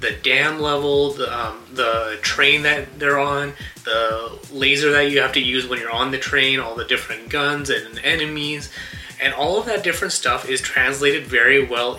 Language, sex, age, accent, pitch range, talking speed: English, male, 30-49, American, 120-145 Hz, 190 wpm